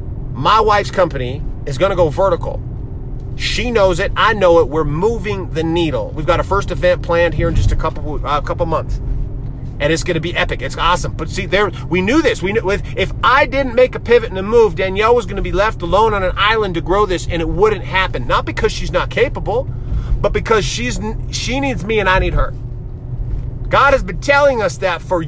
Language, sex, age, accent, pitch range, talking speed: English, male, 30-49, American, 120-200 Hz, 235 wpm